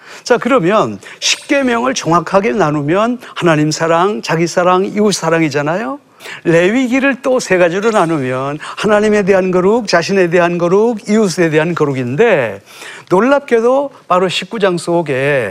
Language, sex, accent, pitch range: Korean, male, native, 165-245 Hz